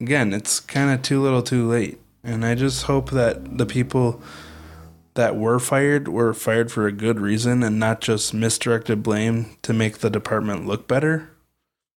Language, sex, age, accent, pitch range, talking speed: English, male, 20-39, American, 110-125 Hz, 175 wpm